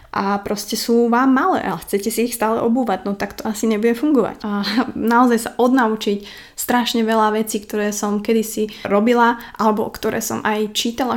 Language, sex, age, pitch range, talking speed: Slovak, female, 20-39, 205-230 Hz, 175 wpm